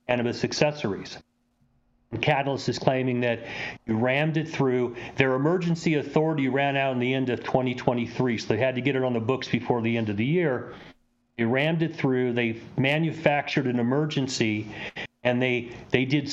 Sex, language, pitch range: male, English, 120-140 Hz